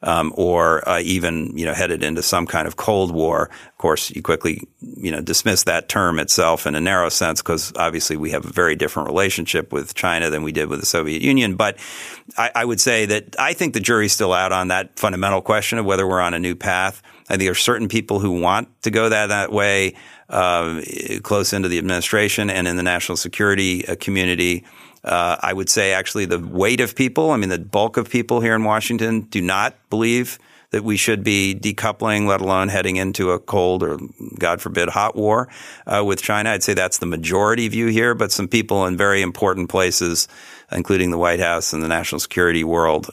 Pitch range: 90-110 Hz